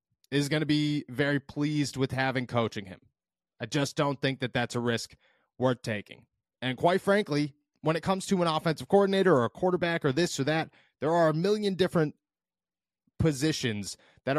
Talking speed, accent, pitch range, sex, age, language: 185 wpm, American, 115-145 Hz, male, 30-49, English